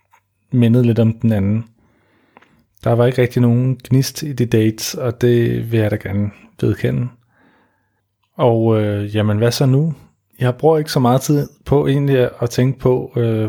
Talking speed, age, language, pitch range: 175 wpm, 30-49, Danish, 110-135 Hz